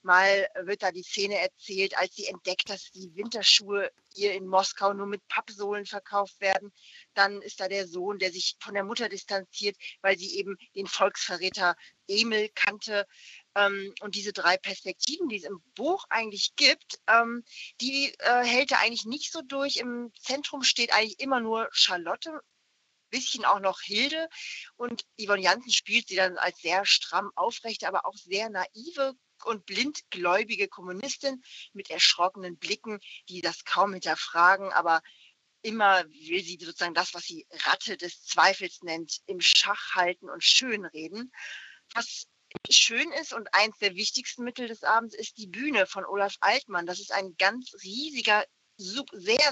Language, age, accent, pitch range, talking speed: German, 40-59, German, 190-240 Hz, 160 wpm